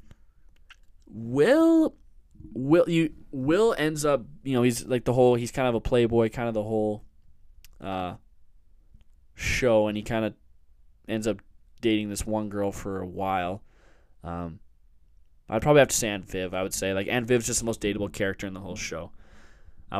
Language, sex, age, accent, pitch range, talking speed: English, male, 20-39, American, 90-125 Hz, 180 wpm